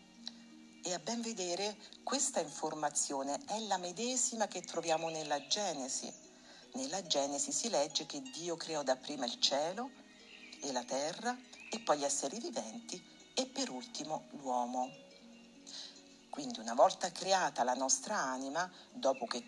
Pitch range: 145-240 Hz